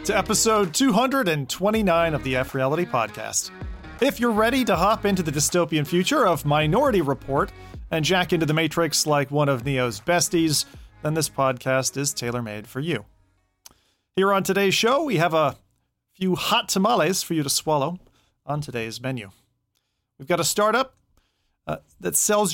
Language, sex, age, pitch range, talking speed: English, male, 40-59, 130-195 Hz, 165 wpm